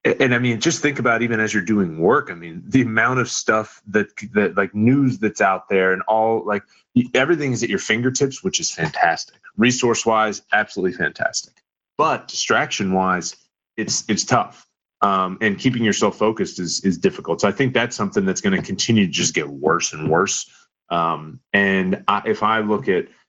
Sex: male